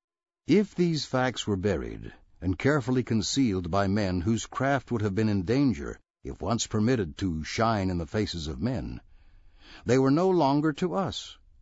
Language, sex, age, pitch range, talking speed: English, male, 60-79, 95-130 Hz, 170 wpm